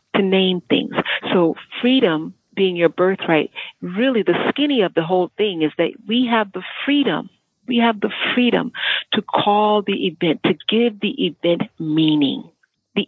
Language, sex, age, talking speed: English, female, 40-59, 160 wpm